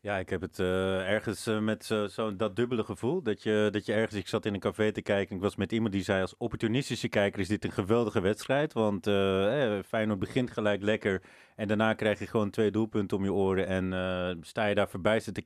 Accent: Dutch